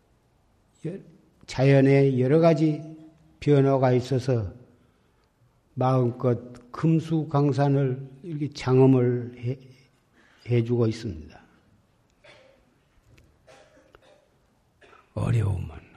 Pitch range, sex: 120-150 Hz, male